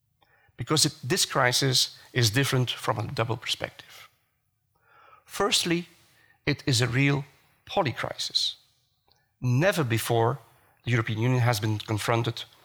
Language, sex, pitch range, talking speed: Dutch, male, 115-145 Hz, 115 wpm